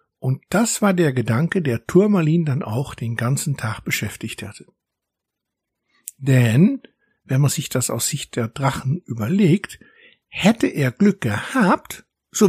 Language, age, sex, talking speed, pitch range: German, 60-79, male, 140 wpm, 130-185 Hz